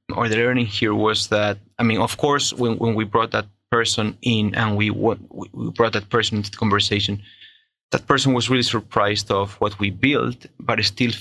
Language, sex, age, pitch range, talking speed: English, male, 30-49, 105-125 Hz, 200 wpm